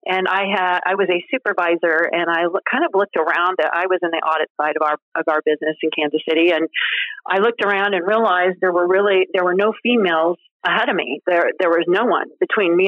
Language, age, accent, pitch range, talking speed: English, 40-59, American, 170-200 Hz, 235 wpm